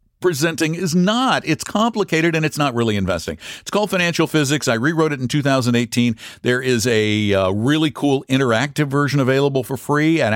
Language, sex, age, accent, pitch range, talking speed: English, male, 60-79, American, 95-135 Hz, 180 wpm